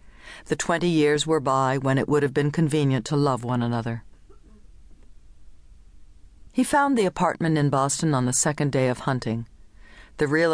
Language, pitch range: English, 125-155 Hz